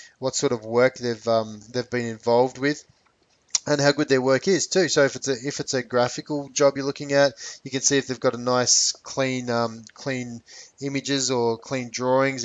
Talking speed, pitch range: 210 wpm, 125-150 Hz